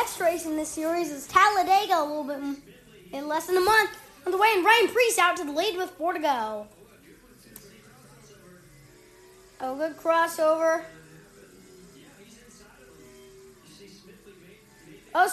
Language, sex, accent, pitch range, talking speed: English, female, American, 285-375 Hz, 135 wpm